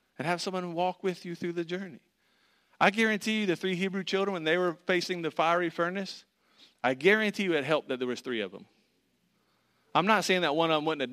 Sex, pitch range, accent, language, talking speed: male, 130-180 Hz, American, English, 230 wpm